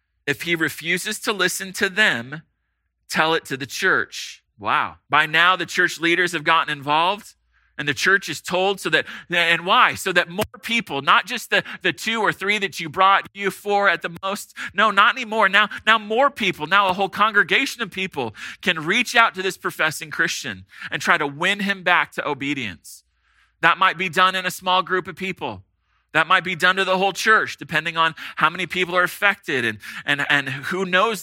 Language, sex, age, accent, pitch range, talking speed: English, male, 30-49, American, 135-195 Hz, 205 wpm